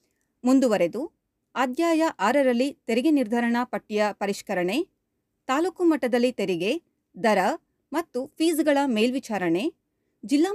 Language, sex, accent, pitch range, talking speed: Kannada, female, native, 215-300 Hz, 85 wpm